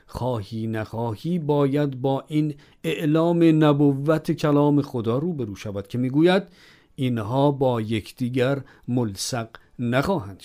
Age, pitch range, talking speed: 50-69, 125-175 Hz, 110 wpm